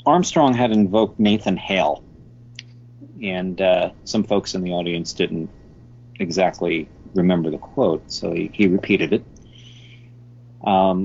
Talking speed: 125 wpm